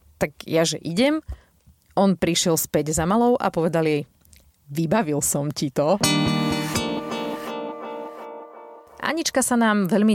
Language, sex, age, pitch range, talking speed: Slovak, female, 30-49, 160-215 Hz, 120 wpm